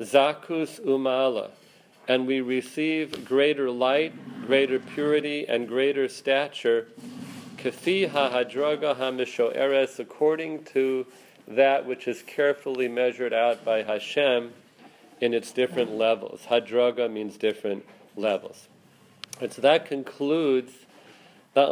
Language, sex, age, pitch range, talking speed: English, male, 40-59, 125-145 Hz, 110 wpm